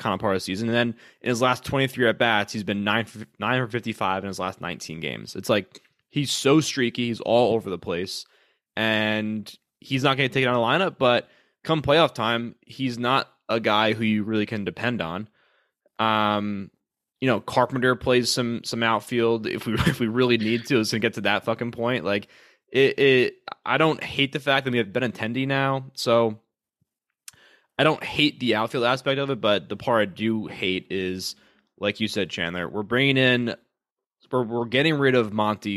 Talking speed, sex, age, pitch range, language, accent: 205 wpm, male, 20-39, 105-130 Hz, English, American